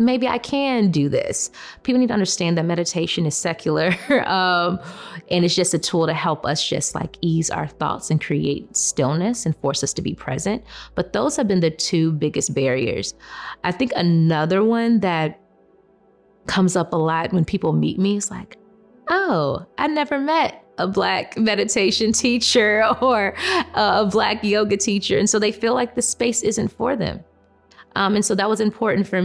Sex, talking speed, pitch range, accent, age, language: female, 185 wpm, 160-215 Hz, American, 20-39, English